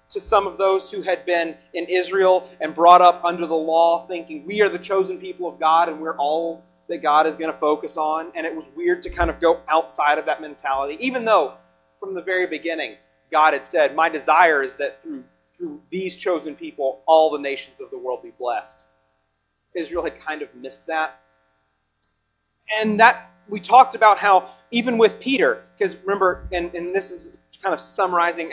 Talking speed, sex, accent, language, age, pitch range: 200 wpm, male, American, English, 30-49, 150-200 Hz